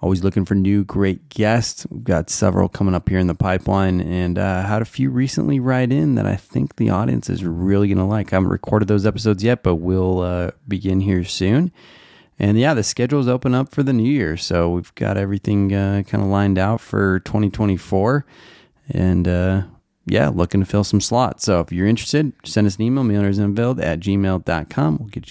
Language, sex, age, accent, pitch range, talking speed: English, male, 30-49, American, 95-115 Hz, 205 wpm